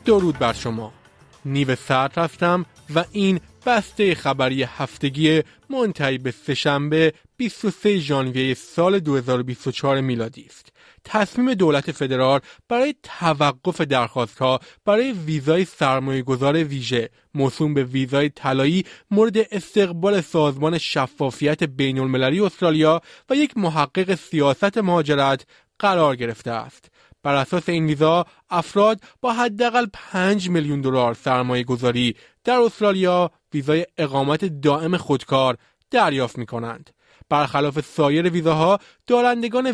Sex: male